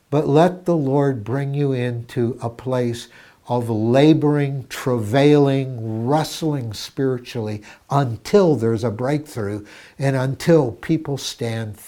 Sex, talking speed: male, 110 wpm